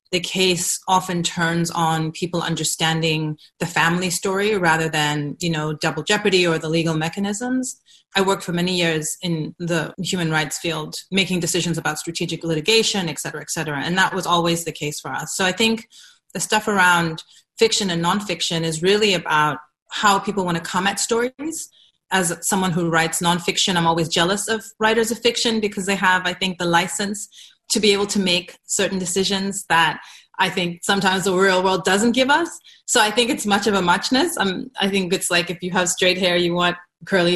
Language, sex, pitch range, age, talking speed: English, female, 165-195 Hz, 30-49, 195 wpm